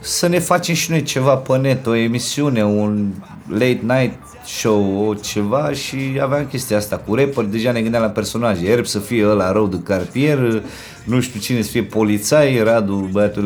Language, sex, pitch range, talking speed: Romanian, male, 110-140 Hz, 185 wpm